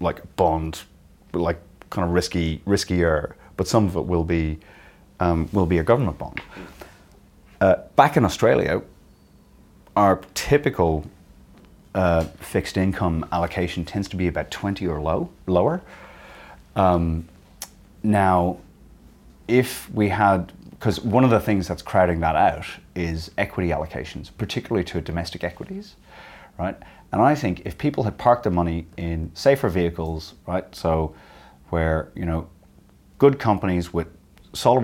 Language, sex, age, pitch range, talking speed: English, male, 30-49, 80-95 Hz, 140 wpm